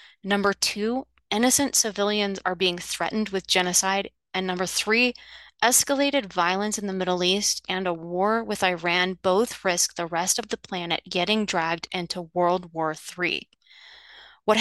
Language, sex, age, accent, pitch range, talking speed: English, female, 20-39, American, 180-220 Hz, 150 wpm